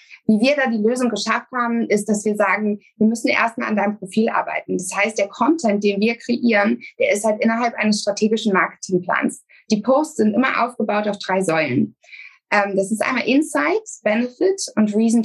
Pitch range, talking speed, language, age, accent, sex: 200-240 Hz, 185 wpm, German, 20-39, German, female